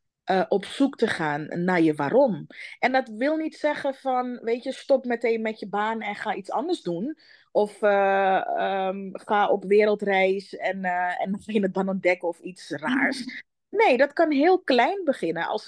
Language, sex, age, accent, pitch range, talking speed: Dutch, female, 30-49, Dutch, 170-230 Hz, 185 wpm